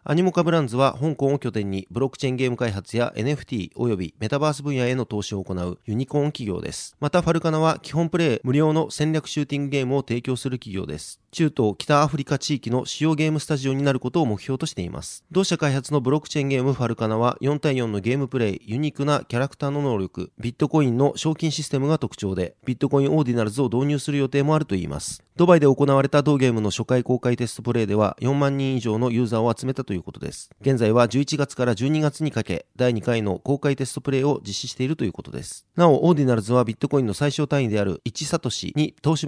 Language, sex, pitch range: Japanese, male, 120-150 Hz